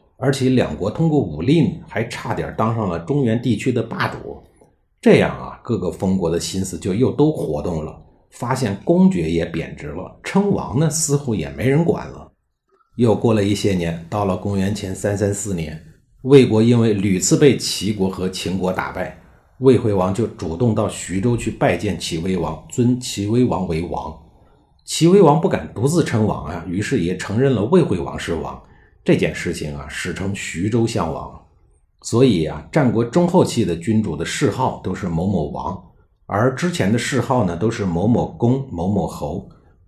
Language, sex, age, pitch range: Chinese, male, 50-69, 85-125 Hz